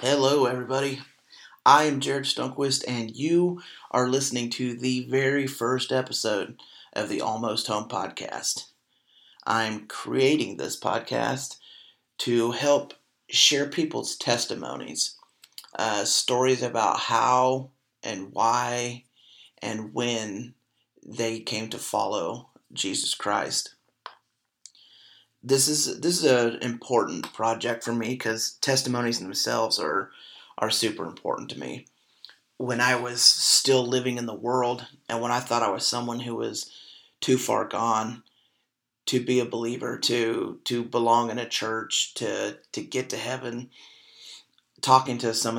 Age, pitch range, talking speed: 30-49, 115-130 Hz, 130 wpm